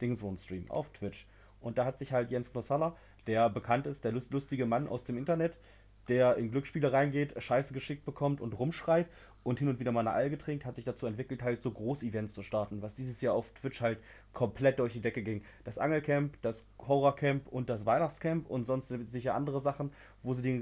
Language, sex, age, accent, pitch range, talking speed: German, male, 30-49, German, 110-130 Hz, 210 wpm